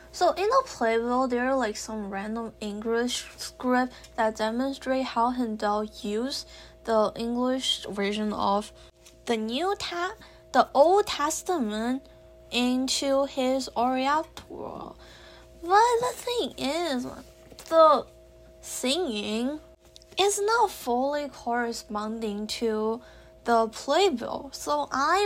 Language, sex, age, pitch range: English, female, 10-29, 230-315 Hz